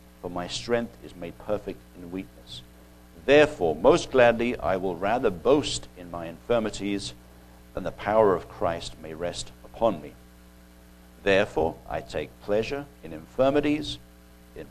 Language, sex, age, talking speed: English, male, 60-79, 140 wpm